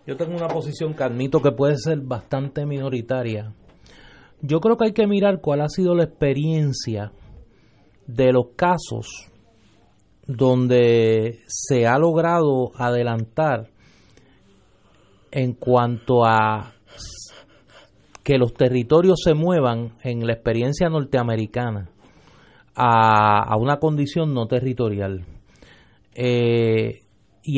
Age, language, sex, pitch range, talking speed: 30-49, Spanish, male, 115-170 Hz, 105 wpm